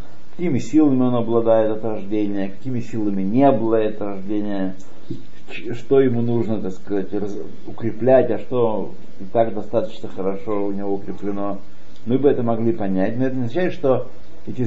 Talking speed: 150 wpm